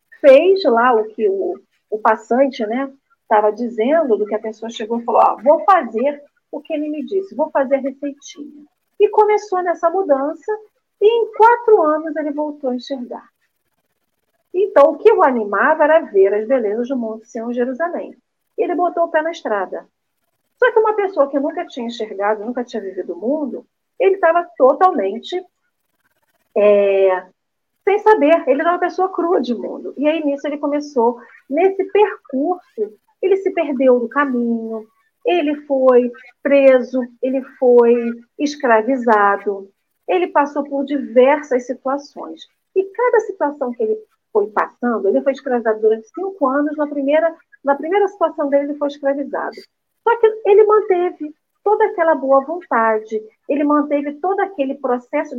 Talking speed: 155 wpm